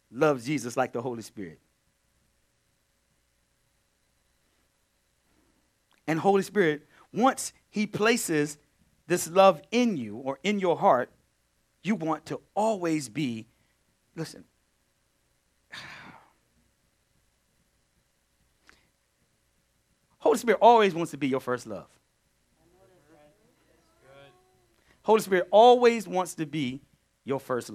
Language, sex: English, male